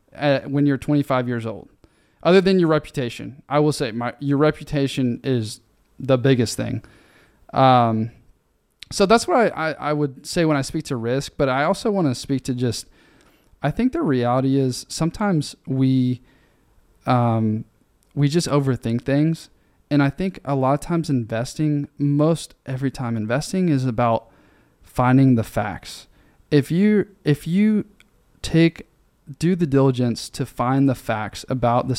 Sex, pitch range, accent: male, 125-155 Hz, American